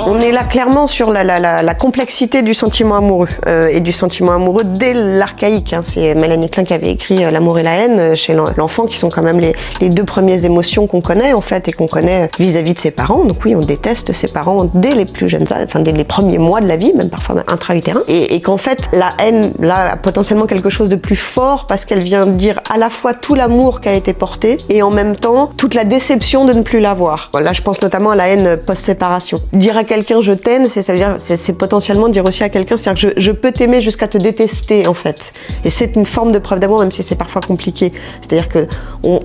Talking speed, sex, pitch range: 250 wpm, female, 180-220 Hz